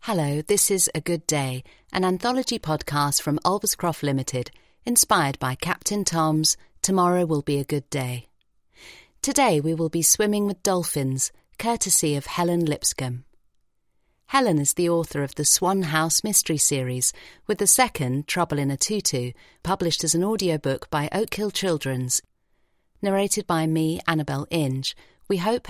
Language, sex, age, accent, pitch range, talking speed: English, female, 40-59, British, 140-180 Hz, 150 wpm